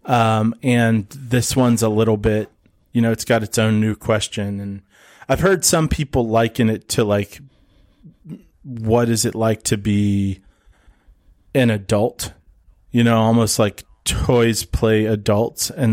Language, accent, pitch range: English, American, 105-115 Hz